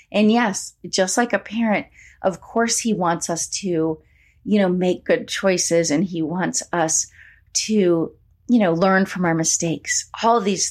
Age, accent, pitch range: 30-49, American, 160-200 Hz